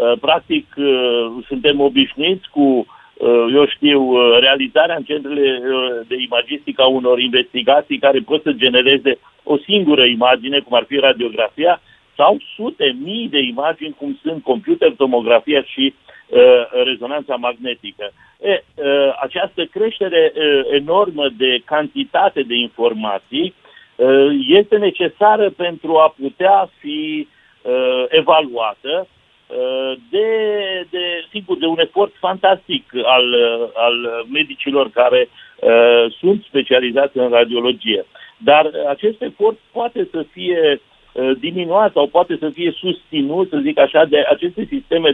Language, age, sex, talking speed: Romanian, 60-79, male, 115 wpm